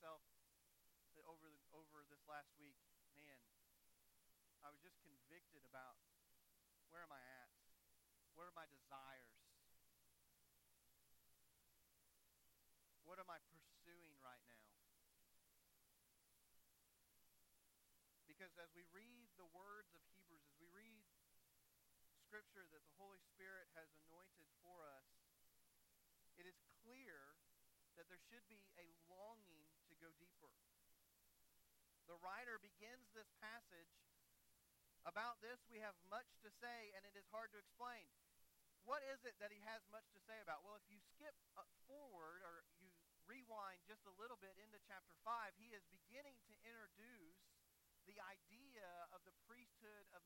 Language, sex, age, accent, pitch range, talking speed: English, male, 40-59, American, 135-210 Hz, 135 wpm